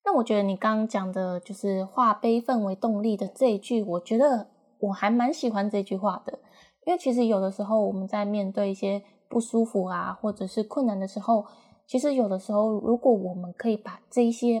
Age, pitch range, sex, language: 10-29, 200-250 Hz, female, Chinese